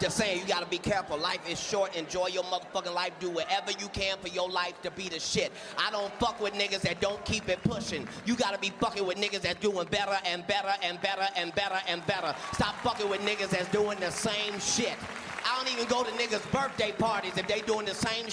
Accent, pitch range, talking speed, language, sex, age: American, 180-235 Hz, 240 wpm, English, male, 30-49